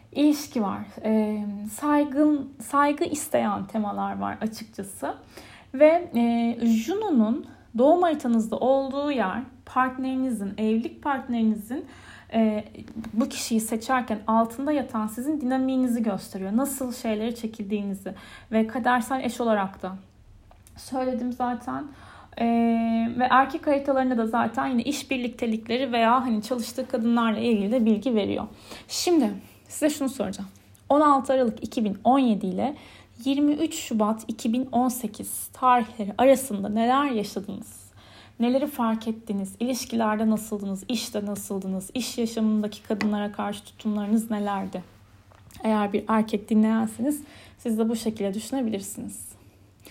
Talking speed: 110 wpm